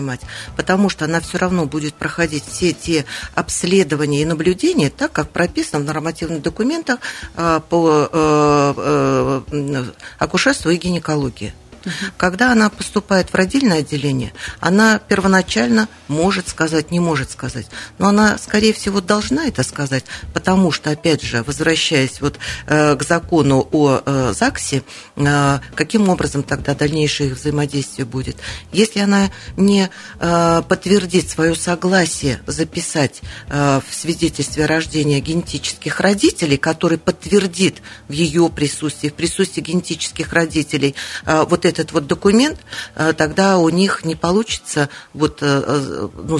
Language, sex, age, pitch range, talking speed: Russian, female, 40-59, 140-180 Hz, 125 wpm